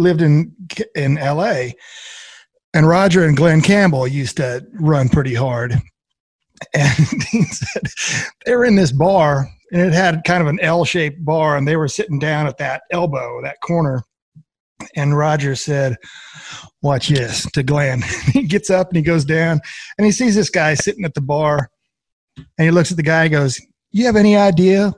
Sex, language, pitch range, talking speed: male, English, 145-185 Hz, 180 wpm